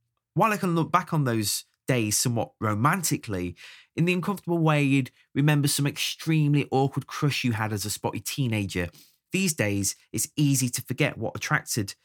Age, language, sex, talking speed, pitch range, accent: 20-39, English, male, 170 wpm, 110-150 Hz, British